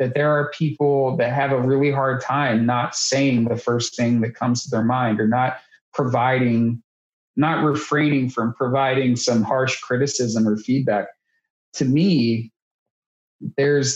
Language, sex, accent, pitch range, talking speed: English, male, American, 120-140 Hz, 150 wpm